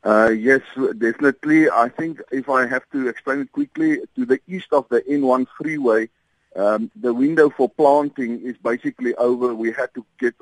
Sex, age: male, 50-69